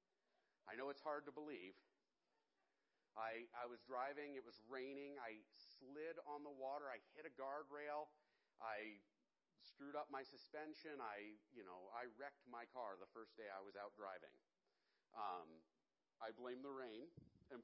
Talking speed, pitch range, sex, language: 160 wpm, 120-150 Hz, male, English